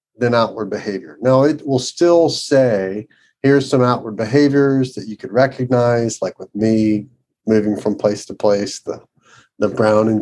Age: 40-59